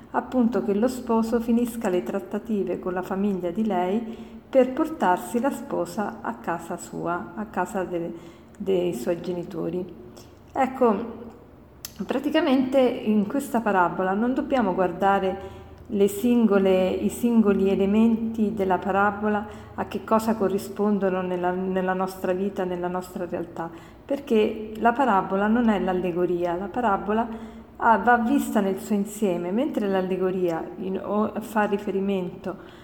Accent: native